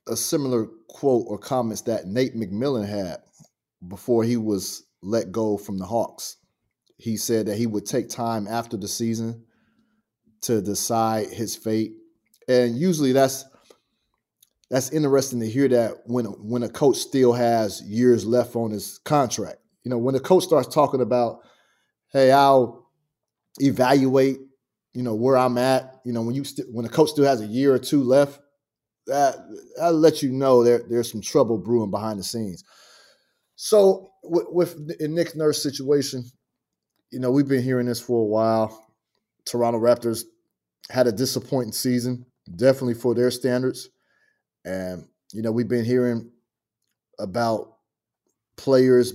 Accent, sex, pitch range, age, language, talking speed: American, male, 115-135 Hz, 30-49, English, 155 wpm